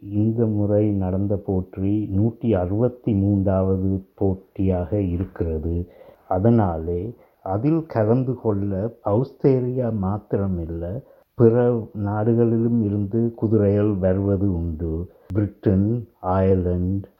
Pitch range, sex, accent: 95-110 Hz, male, native